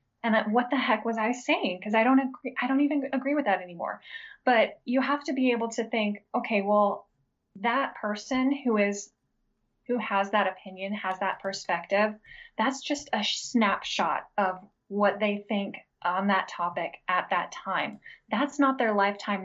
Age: 10-29